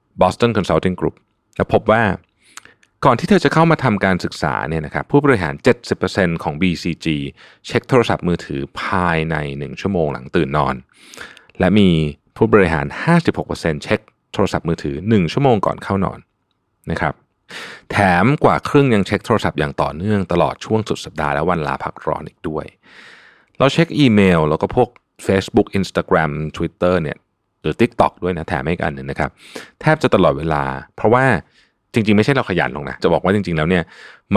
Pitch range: 80-110 Hz